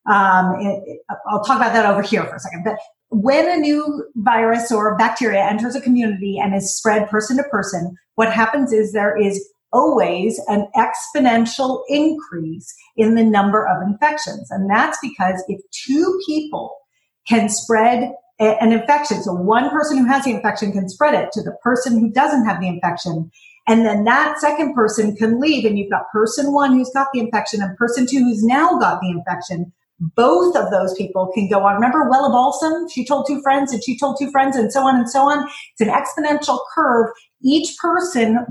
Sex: female